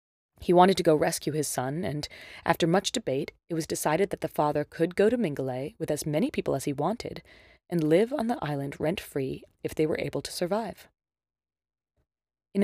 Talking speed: 195 wpm